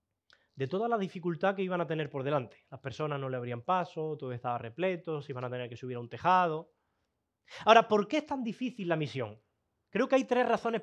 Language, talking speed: Spanish, 225 wpm